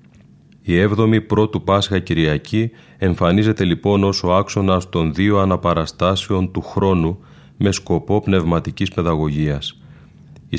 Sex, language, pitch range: male, Greek, 85-100 Hz